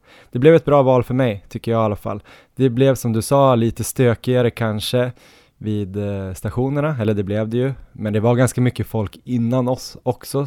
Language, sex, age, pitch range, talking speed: Swedish, male, 20-39, 100-120 Hz, 205 wpm